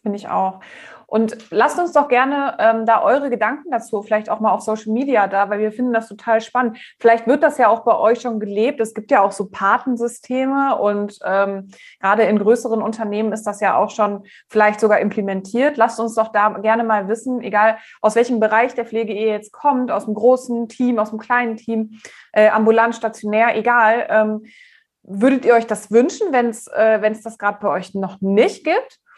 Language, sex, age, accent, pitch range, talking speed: German, female, 20-39, German, 210-235 Hz, 200 wpm